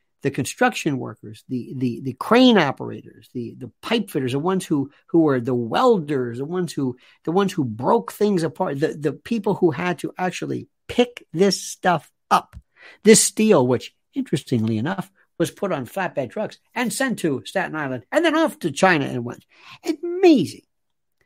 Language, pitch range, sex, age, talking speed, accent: English, 135-195 Hz, male, 50-69, 175 wpm, American